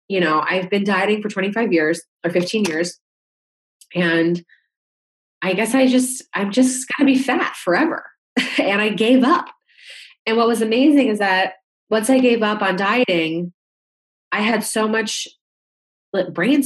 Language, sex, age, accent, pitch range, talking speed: English, female, 20-39, American, 175-230 Hz, 155 wpm